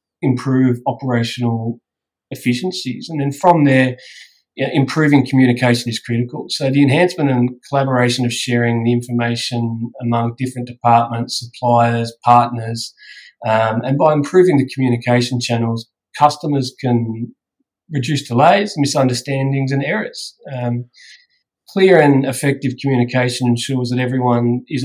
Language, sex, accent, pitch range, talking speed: English, male, Australian, 120-140 Hz, 115 wpm